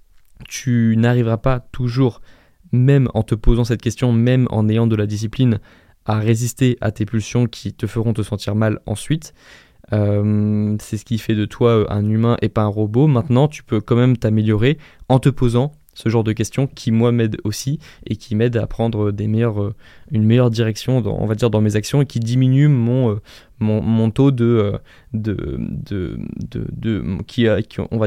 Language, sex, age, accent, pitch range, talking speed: French, male, 20-39, French, 110-125 Hz, 175 wpm